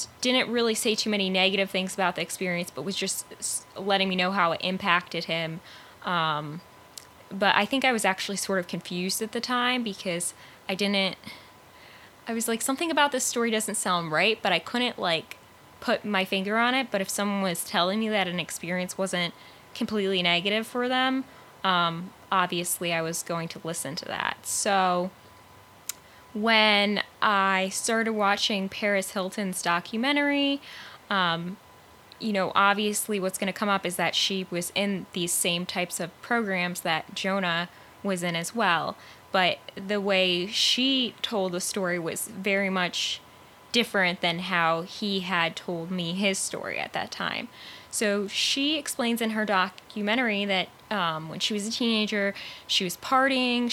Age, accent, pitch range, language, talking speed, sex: 10-29, American, 175-220 Hz, English, 165 wpm, female